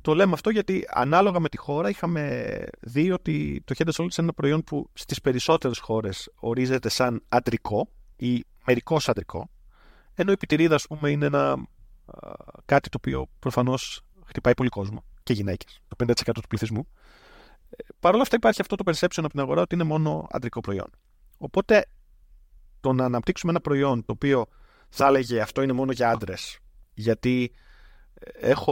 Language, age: Greek, 30-49